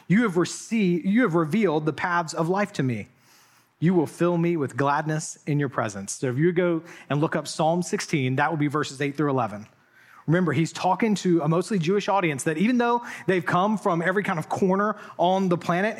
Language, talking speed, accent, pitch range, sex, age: English, 220 wpm, American, 160-215 Hz, male, 30-49